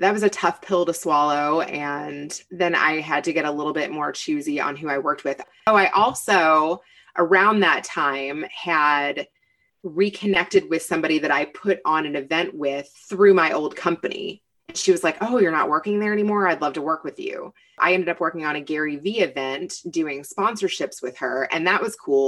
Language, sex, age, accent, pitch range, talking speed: English, female, 20-39, American, 150-200 Hz, 205 wpm